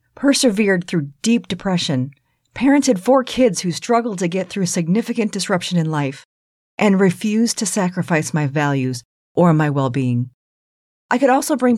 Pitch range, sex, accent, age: 155-230 Hz, female, American, 40-59